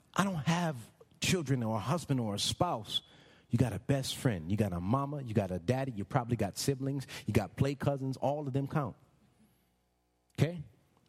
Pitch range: 125-210 Hz